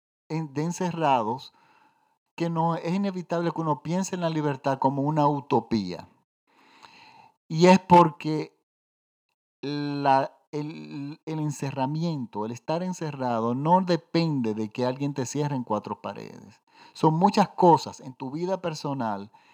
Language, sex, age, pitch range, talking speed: Spanish, male, 50-69, 125-160 Hz, 125 wpm